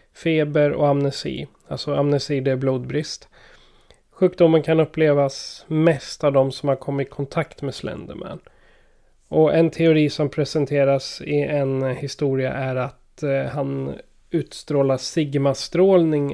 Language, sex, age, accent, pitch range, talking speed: Swedish, male, 30-49, native, 135-160 Hz, 130 wpm